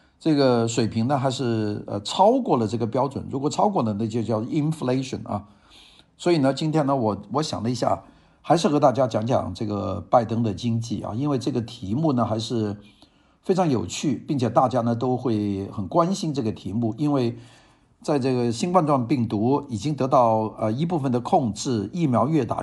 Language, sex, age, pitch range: Chinese, male, 50-69, 110-150 Hz